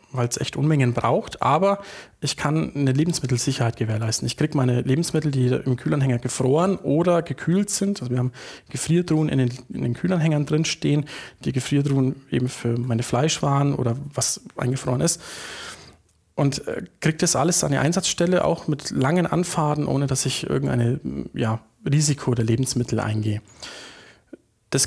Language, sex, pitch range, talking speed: German, male, 125-155 Hz, 155 wpm